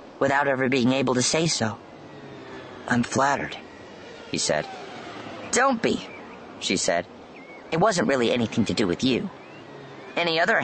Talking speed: 140 wpm